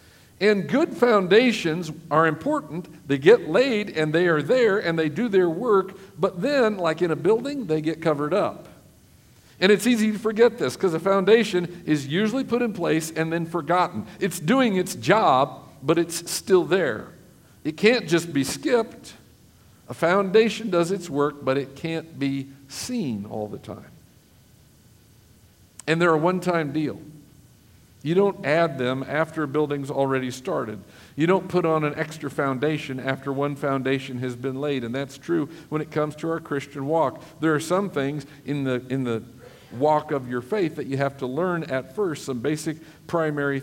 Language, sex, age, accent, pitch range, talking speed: English, male, 50-69, American, 135-175 Hz, 175 wpm